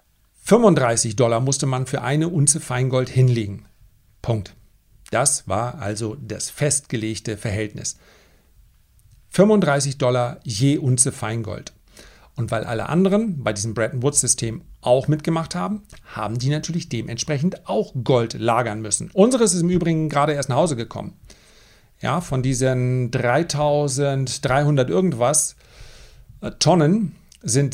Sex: male